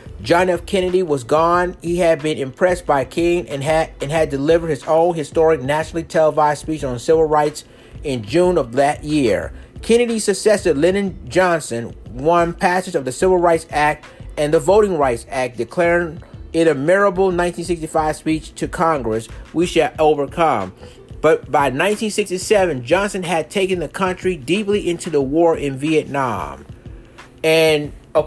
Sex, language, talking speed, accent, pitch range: male, English, 155 wpm, American, 150-185 Hz